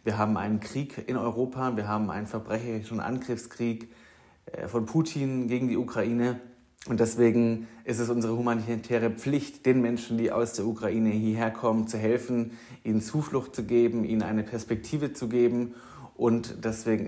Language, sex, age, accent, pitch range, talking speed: German, male, 30-49, German, 110-125 Hz, 155 wpm